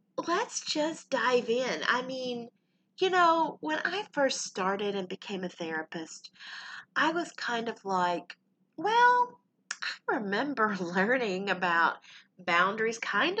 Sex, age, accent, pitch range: female, 30-49, American, 190-290 Hz